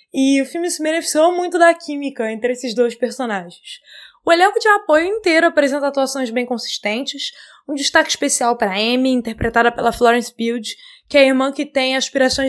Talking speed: 180 wpm